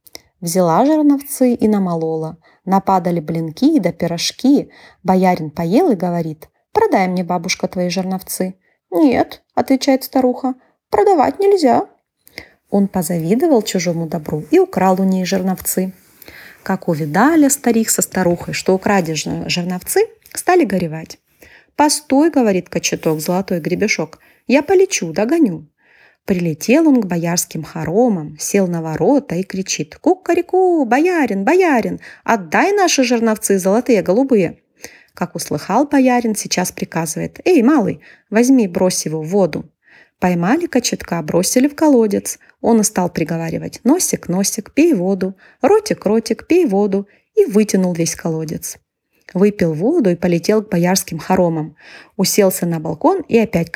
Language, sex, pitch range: Ukrainian, female, 175-260 Hz